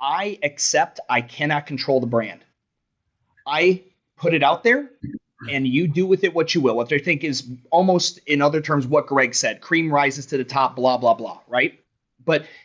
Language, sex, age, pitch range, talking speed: English, male, 30-49, 140-200 Hz, 195 wpm